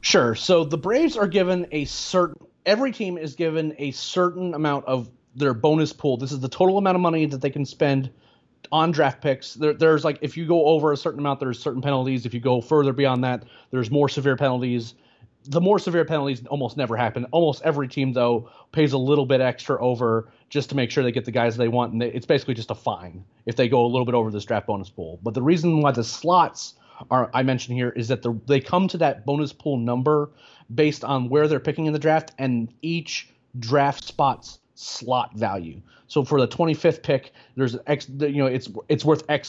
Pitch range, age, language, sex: 125-155 Hz, 30-49, English, male